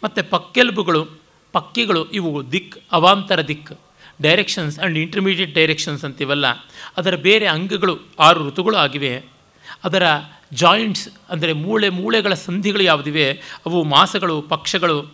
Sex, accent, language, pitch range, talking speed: male, native, Kannada, 145-190 Hz, 110 wpm